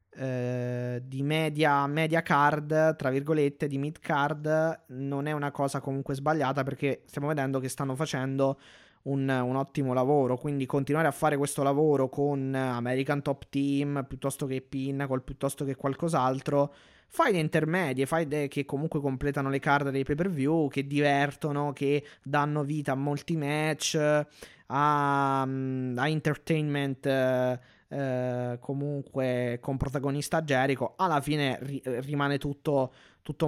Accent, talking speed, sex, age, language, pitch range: native, 145 wpm, male, 20-39, Italian, 130-155 Hz